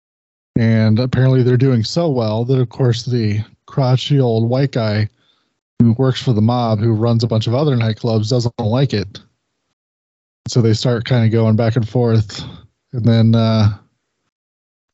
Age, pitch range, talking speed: 20-39, 110-135 Hz, 165 wpm